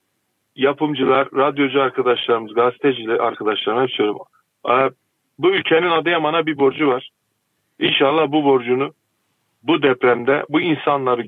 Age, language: 40-59, Turkish